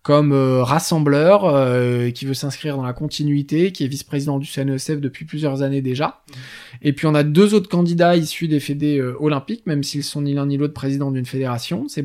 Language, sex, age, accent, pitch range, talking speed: French, male, 20-39, French, 130-155 Hz, 210 wpm